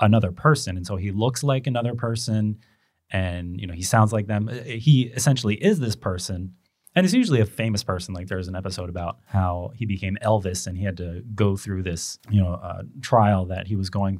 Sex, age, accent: male, 30-49, American